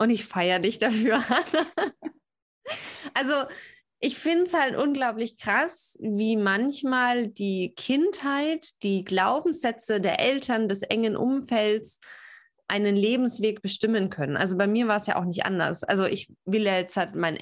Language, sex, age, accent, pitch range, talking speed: German, female, 20-39, German, 200-275 Hz, 150 wpm